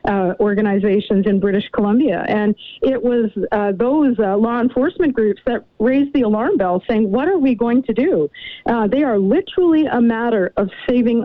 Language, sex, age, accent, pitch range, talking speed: English, female, 50-69, American, 210-255 Hz, 180 wpm